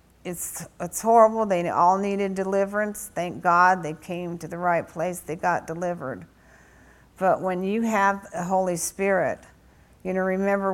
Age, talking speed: 50-69, 155 wpm